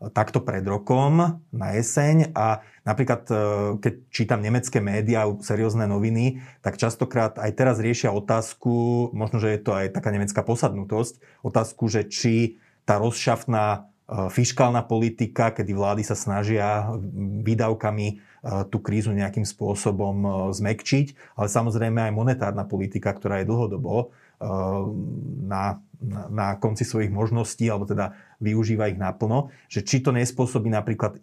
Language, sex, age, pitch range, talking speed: Slovak, male, 30-49, 105-120 Hz, 130 wpm